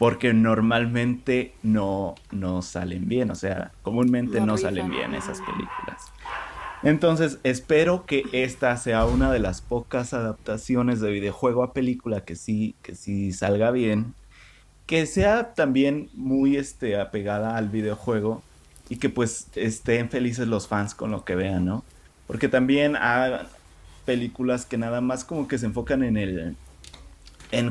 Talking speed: 145 wpm